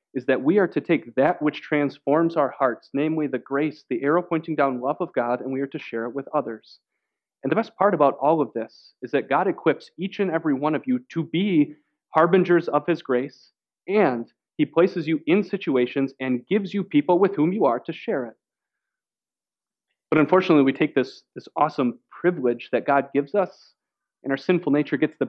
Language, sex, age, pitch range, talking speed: English, male, 30-49, 140-180 Hz, 210 wpm